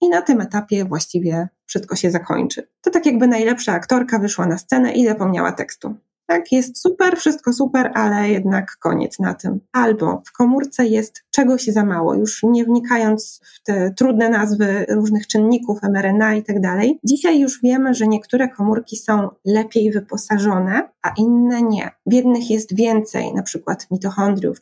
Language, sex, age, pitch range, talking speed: Polish, female, 20-39, 200-240 Hz, 160 wpm